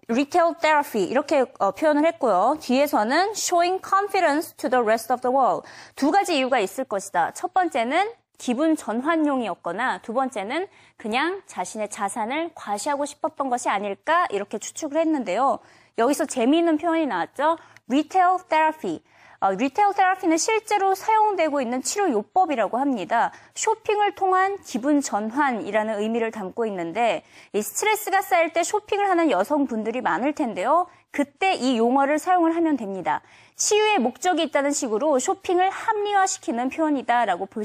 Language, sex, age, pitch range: Korean, female, 20-39, 235-350 Hz